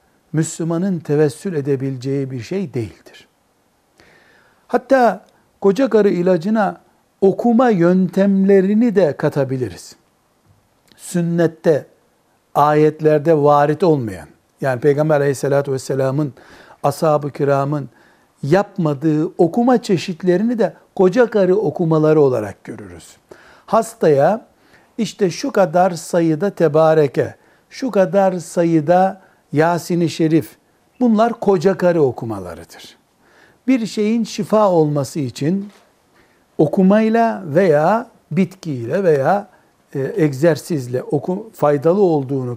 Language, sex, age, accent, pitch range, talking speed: Turkish, male, 60-79, native, 150-195 Hz, 85 wpm